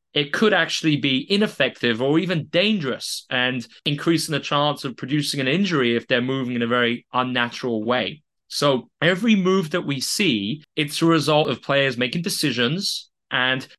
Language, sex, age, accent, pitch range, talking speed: English, male, 20-39, British, 120-155 Hz, 165 wpm